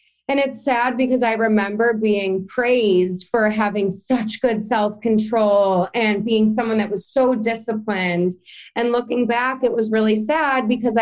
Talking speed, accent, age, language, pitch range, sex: 155 wpm, American, 30-49, English, 205-255 Hz, female